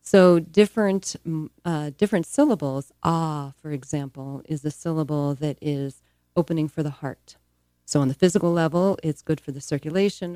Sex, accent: female, American